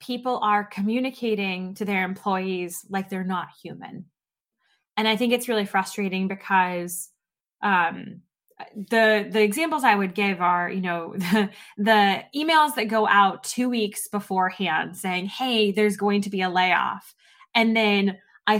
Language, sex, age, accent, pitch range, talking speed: English, female, 20-39, American, 185-220 Hz, 150 wpm